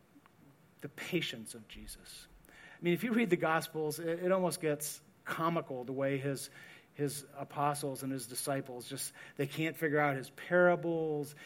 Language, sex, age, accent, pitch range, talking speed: English, male, 40-59, American, 145-185 Hz, 160 wpm